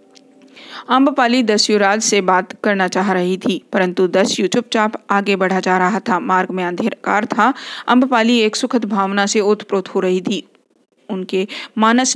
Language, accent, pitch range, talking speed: Hindi, native, 195-235 Hz, 115 wpm